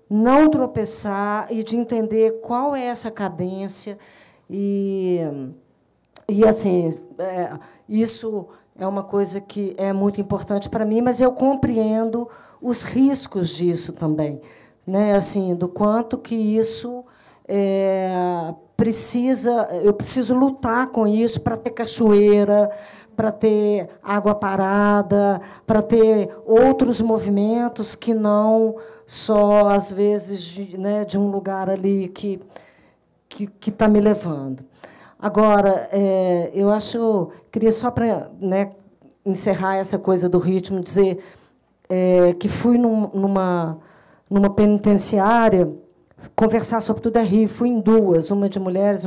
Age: 50-69